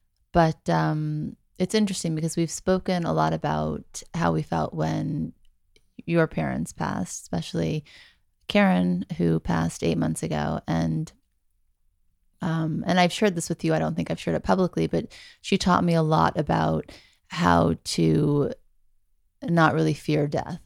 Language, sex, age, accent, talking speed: English, female, 30-49, American, 150 wpm